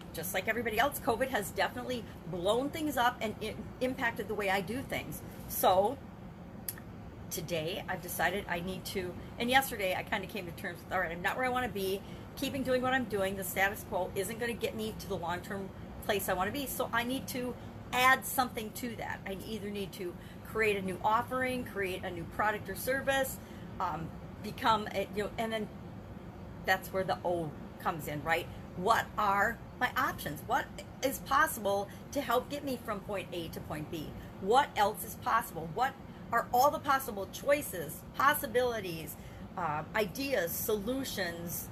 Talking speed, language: 185 wpm, English